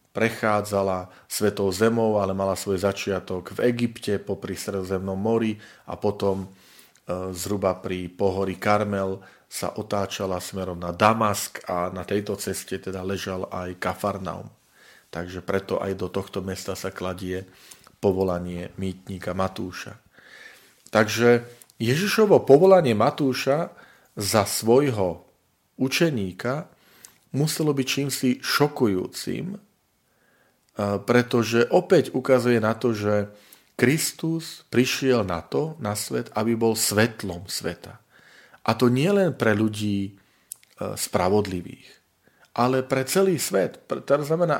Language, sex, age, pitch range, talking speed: Slovak, male, 40-59, 95-120 Hz, 110 wpm